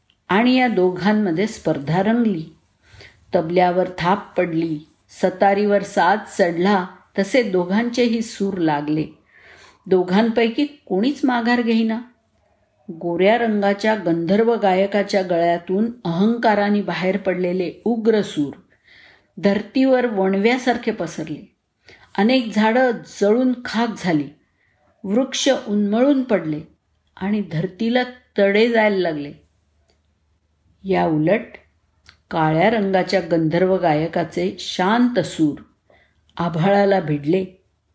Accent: native